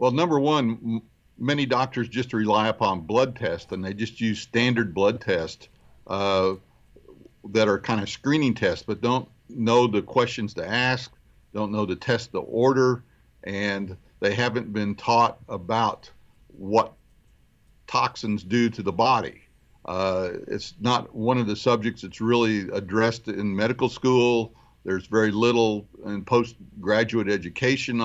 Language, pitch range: English, 100-125 Hz